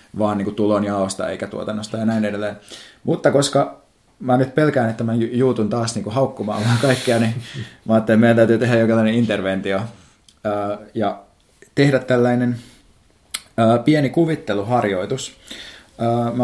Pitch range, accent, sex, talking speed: 100-120 Hz, native, male, 130 wpm